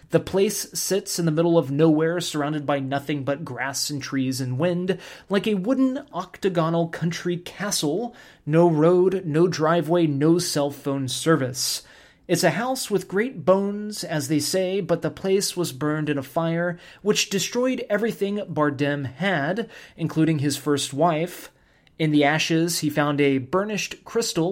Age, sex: 30-49, male